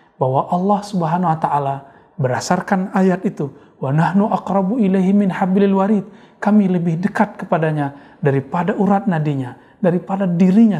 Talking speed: 120 wpm